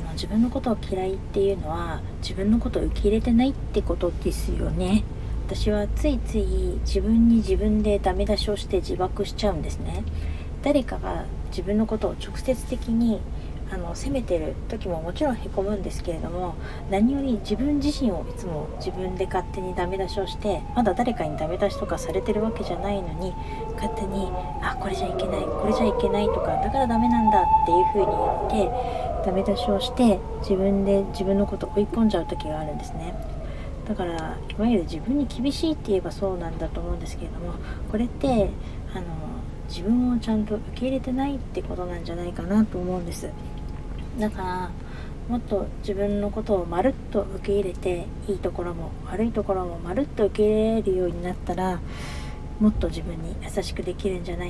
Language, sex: Japanese, female